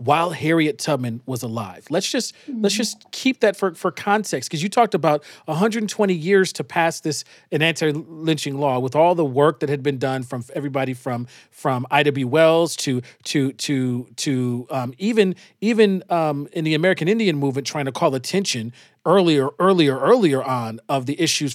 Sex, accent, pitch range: male, American, 135-185 Hz